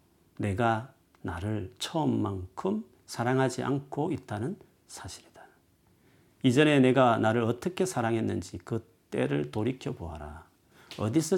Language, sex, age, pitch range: Korean, male, 40-59, 90-135 Hz